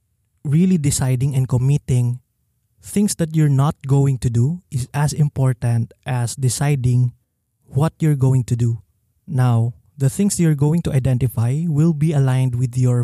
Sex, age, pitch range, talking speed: male, 20-39, 115-150 Hz, 150 wpm